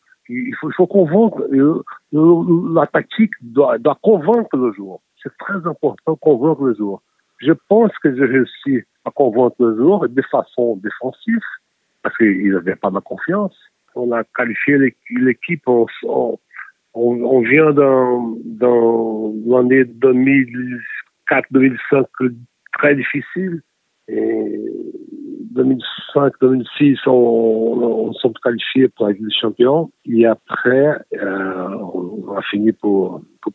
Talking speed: 120 wpm